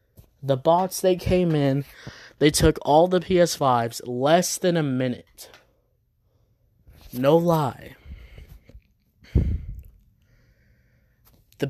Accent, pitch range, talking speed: American, 115-150 Hz, 85 wpm